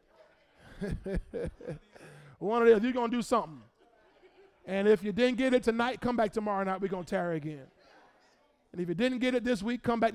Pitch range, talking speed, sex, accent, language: 175-235 Hz, 190 wpm, male, American, English